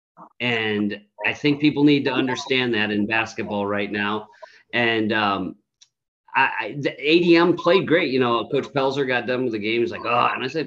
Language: English